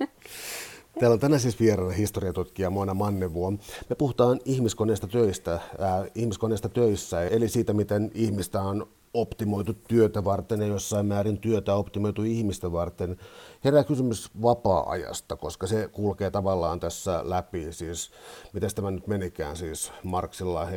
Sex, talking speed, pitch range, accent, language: male, 130 wpm, 90-110 Hz, native, Finnish